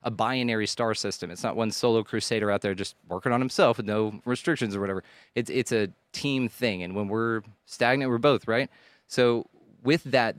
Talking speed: 200 wpm